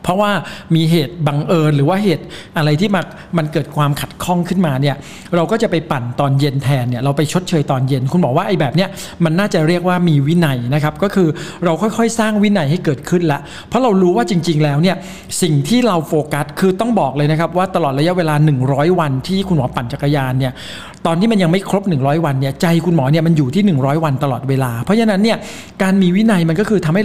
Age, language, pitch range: 60-79, Thai, 145-185 Hz